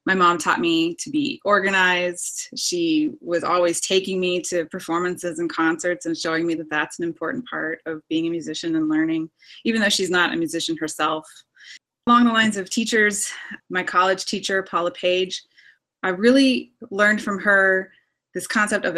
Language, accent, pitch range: English, American, 170-225 Hz